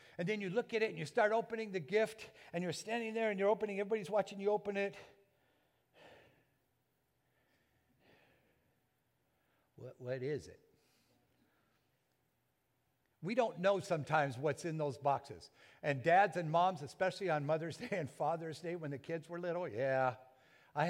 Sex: male